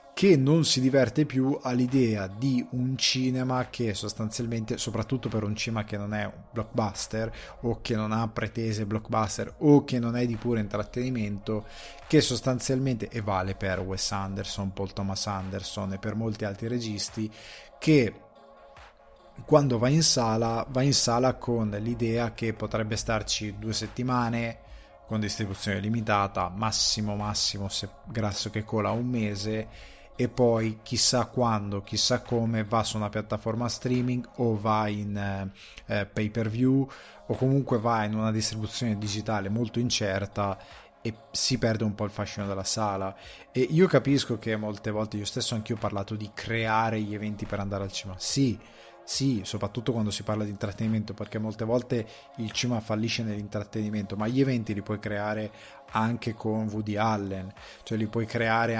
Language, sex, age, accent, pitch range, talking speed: Italian, male, 20-39, native, 105-120 Hz, 160 wpm